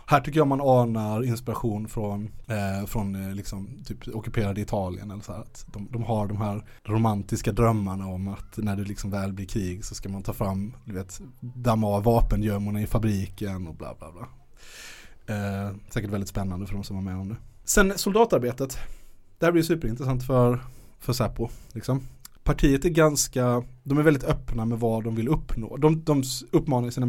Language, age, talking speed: Swedish, 20-39, 185 wpm